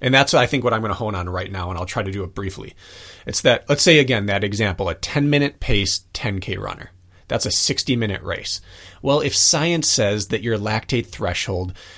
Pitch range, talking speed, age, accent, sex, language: 95-125 Hz, 215 wpm, 30-49, American, male, English